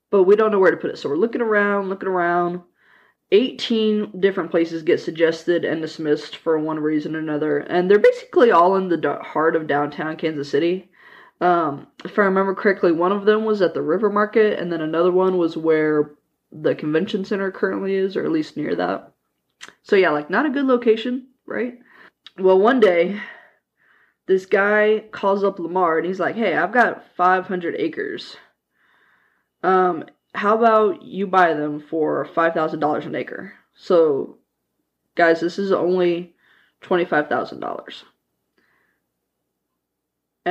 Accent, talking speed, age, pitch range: American, 155 wpm, 20-39, 170-220 Hz